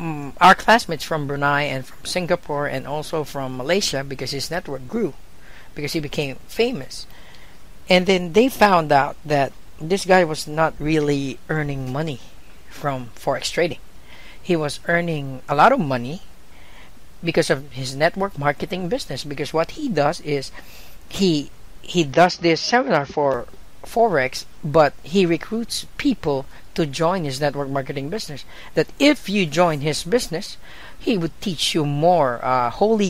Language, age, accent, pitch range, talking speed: English, 50-69, Filipino, 145-185 Hz, 150 wpm